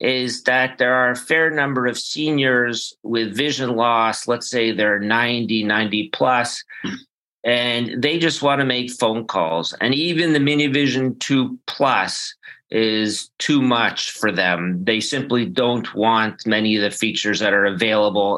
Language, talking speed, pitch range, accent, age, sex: English, 160 wpm, 110-135 Hz, American, 40-59, male